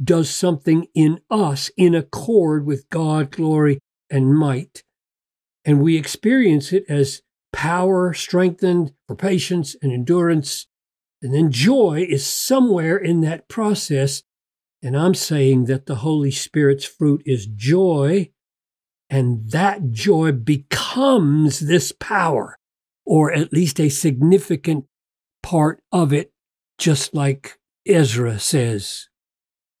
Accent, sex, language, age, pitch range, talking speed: American, male, English, 50-69, 135-170 Hz, 115 wpm